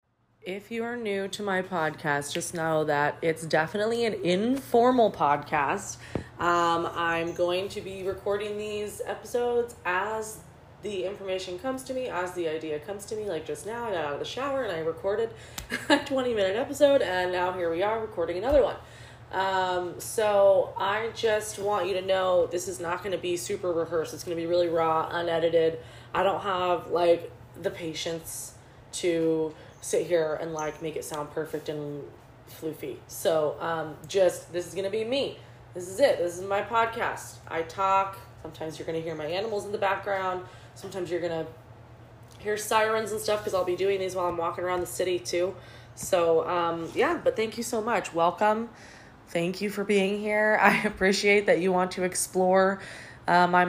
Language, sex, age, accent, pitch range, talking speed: English, female, 20-39, American, 160-205 Hz, 190 wpm